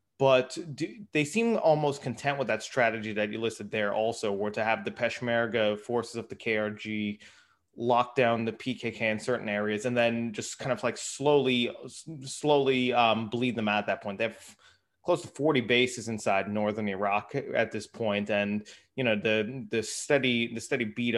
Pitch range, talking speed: 110-130 Hz, 190 wpm